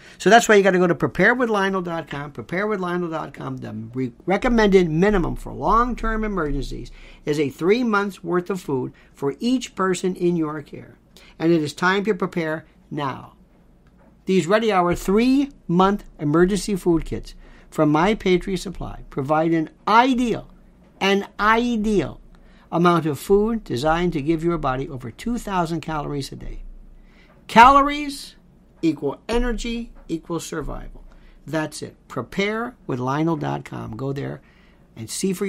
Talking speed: 130 wpm